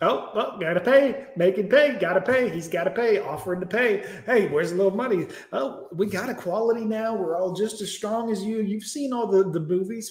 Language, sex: English, male